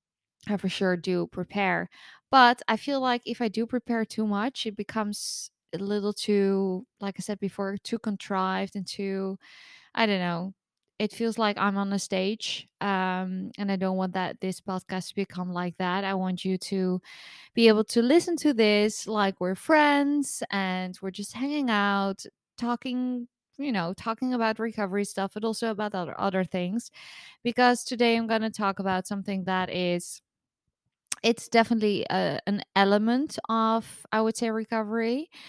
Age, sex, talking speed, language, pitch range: 20-39, female, 170 wpm, English, 190-235 Hz